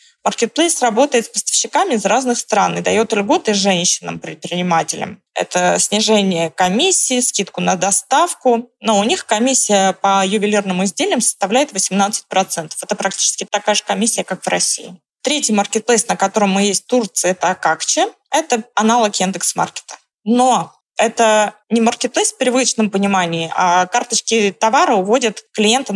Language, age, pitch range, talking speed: Russian, 20-39, 190-230 Hz, 135 wpm